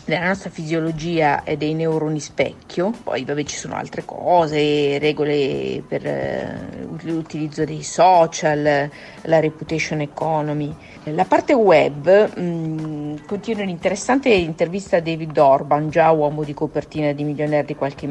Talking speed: 125 wpm